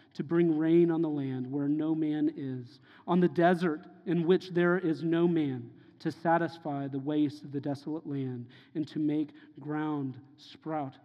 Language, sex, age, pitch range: English, male, 40-59, 145-205 Hz